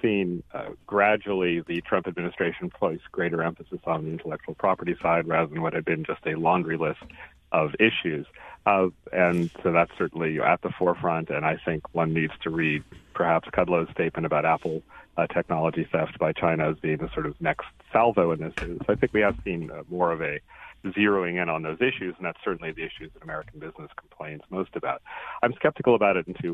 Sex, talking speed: male, 205 wpm